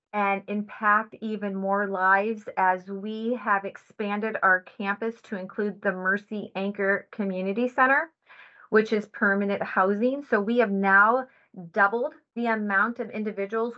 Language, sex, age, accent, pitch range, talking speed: English, female, 30-49, American, 205-235 Hz, 135 wpm